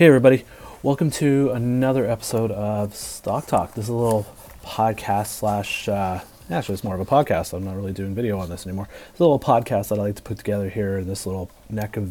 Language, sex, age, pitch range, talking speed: English, male, 30-49, 95-110 Hz, 230 wpm